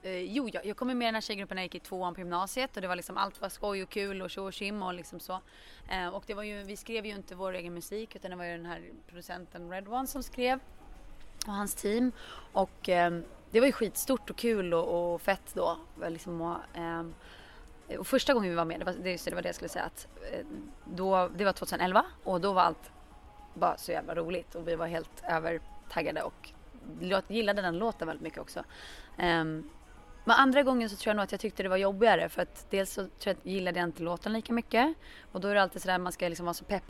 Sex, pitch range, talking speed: female, 170-205 Hz, 250 wpm